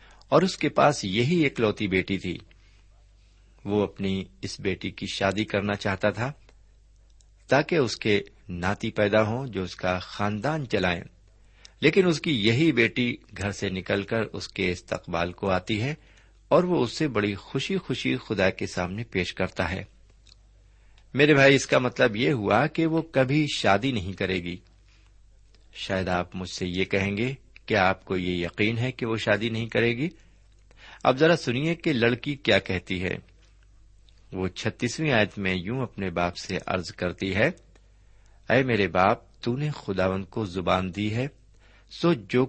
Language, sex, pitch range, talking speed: Urdu, male, 95-120 Hz, 170 wpm